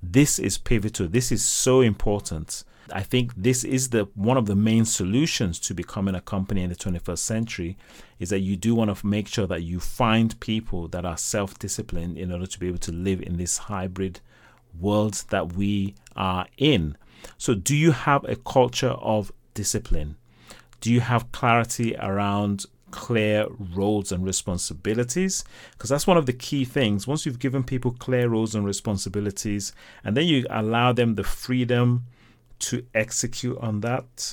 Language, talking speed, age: English, 170 wpm, 30-49